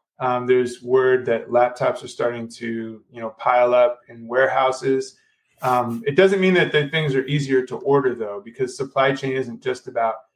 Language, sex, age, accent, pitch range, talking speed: English, male, 30-49, American, 120-145 Hz, 185 wpm